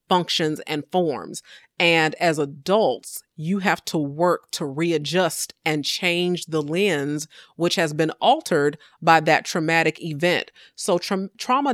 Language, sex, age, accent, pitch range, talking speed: English, female, 30-49, American, 150-185 Hz, 135 wpm